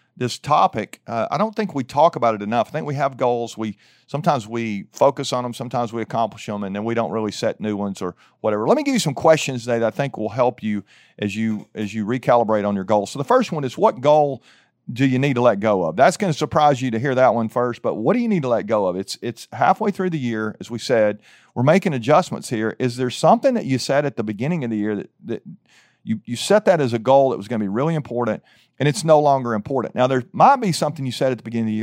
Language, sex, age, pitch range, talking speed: English, male, 40-59, 115-145 Hz, 275 wpm